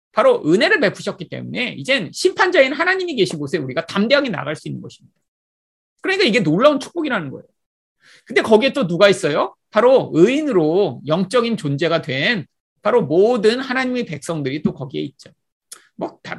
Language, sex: Korean, male